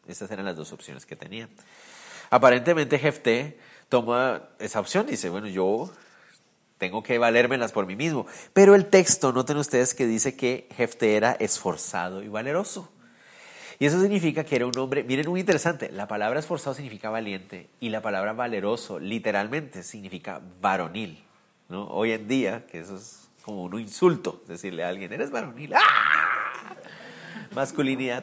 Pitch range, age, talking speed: 110-160 Hz, 30-49, 155 wpm